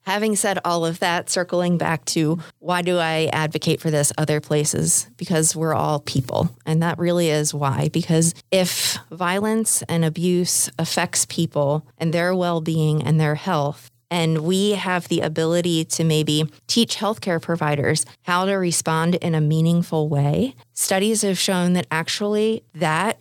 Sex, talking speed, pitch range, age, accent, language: female, 160 wpm, 155-180 Hz, 30-49, American, English